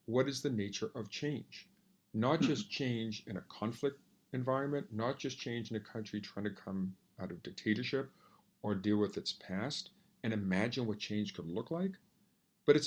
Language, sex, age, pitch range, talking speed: English, male, 50-69, 105-145 Hz, 180 wpm